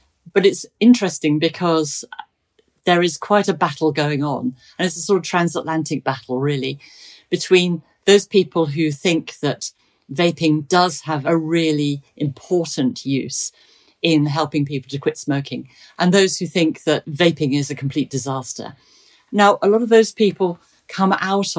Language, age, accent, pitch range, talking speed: English, 50-69, British, 140-175 Hz, 155 wpm